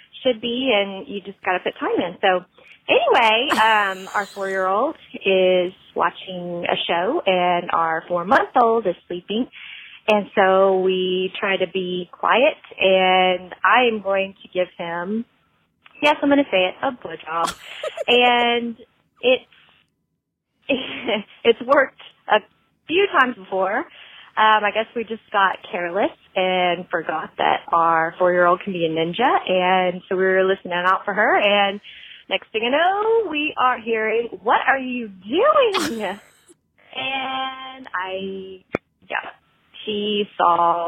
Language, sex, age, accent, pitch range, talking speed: English, female, 20-39, American, 185-245 Hz, 140 wpm